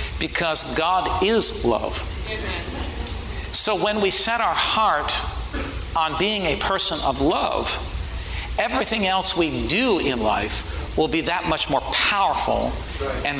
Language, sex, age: English, male, 50-69